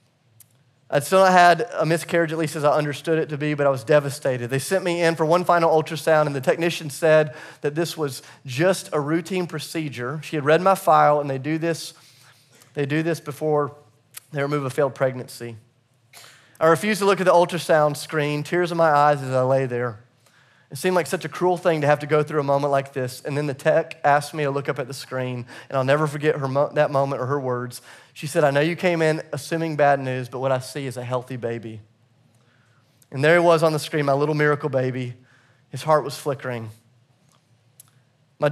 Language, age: English, 30-49